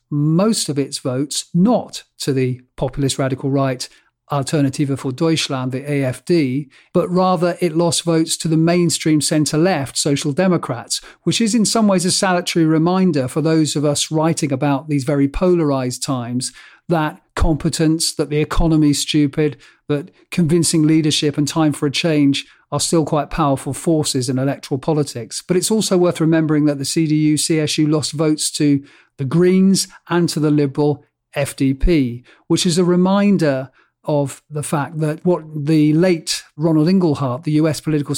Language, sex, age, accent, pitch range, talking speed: English, male, 50-69, British, 140-170 Hz, 160 wpm